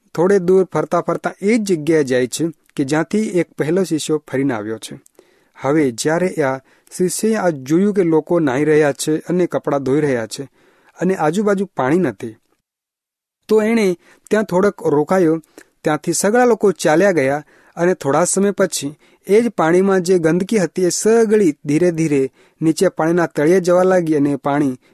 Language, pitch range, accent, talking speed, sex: Hindi, 140-185 Hz, native, 55 wpm, male